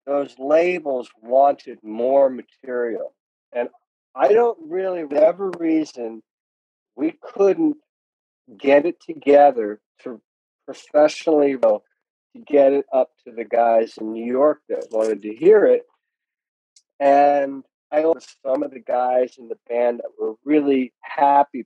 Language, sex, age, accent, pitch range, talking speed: English, male, 50-69, American, 120-165 Hz, 140 wpm